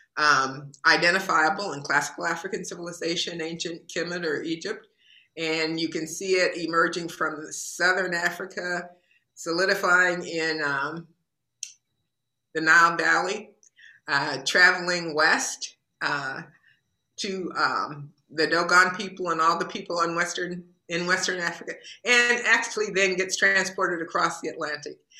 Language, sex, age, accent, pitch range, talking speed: English, female, 50-69, American, 155-185 Hz, 120 wpm